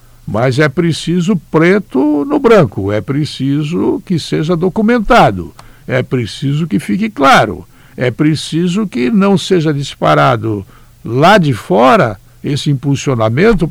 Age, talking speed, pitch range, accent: 60-79, 120 wpm, 120-185 Hz, Brazilian